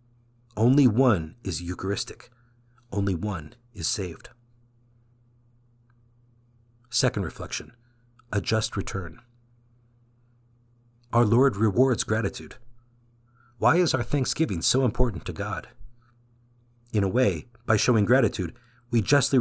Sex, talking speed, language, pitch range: male, 100 wpm, English, 110-120 Hz